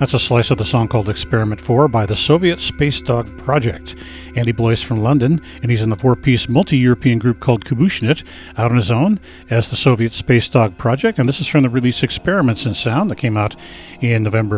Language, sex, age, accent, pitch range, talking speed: English, male, 50-69, American, 110-140 Hz, 215 wpm